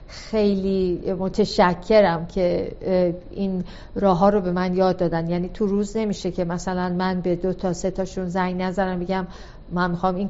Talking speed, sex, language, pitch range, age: 170 wpm, female, Persian, 175-195 Hz, 50-69